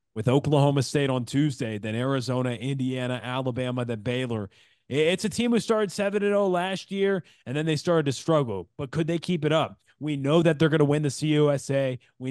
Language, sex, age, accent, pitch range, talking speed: English, male, 30-49, American, 125-155 Hz, 200 wpm